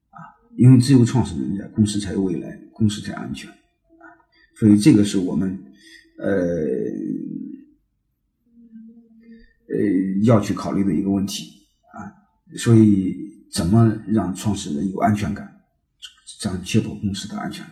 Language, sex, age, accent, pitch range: Chinese, male, 50-69, native, 100-135 Hz